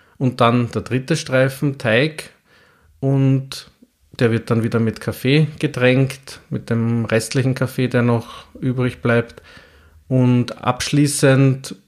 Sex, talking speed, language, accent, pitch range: male, 120 wpm, German, Austrian, 110-130 Hz